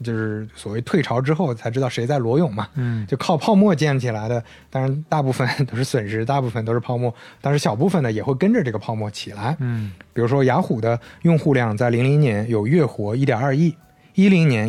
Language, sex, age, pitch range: Chinese, male, 20-39, 115-155 Hz